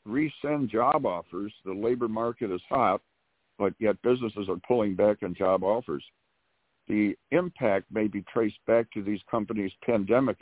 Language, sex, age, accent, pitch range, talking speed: English, male, 60-79, American, 90-115 Hz, 155 wpm